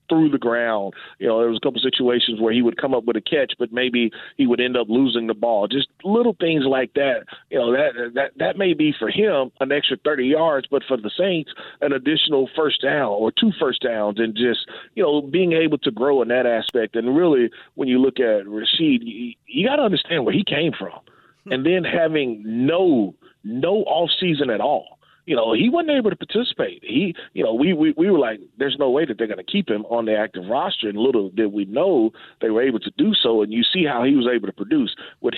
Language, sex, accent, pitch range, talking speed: English, male, American, 115-150 Hz, 235 wpm